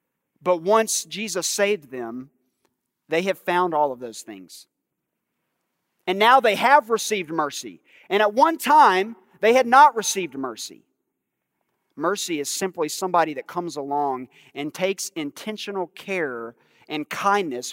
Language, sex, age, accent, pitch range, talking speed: English, male, 40-59, American, 155-220 Hz, 135 wpm